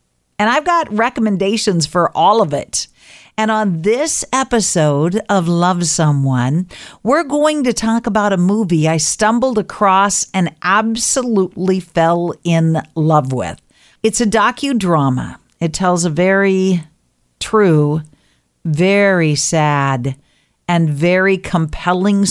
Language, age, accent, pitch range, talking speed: English, 50-69, American, 155-215 Hz, 120 wpm